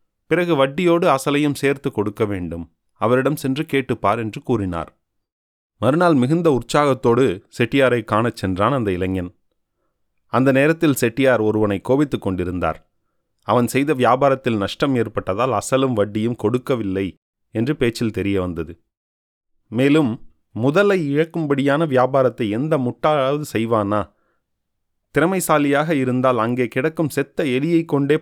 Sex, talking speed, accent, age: male, 110 wpm, native, 30-49